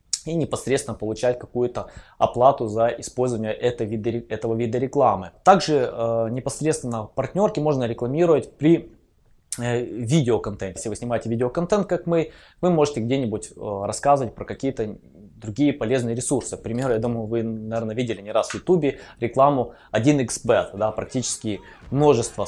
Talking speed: 130 wpm